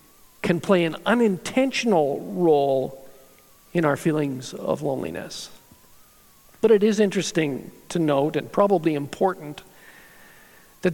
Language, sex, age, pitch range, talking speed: English, male, 50-69, 150-210 Hz, 110 wpm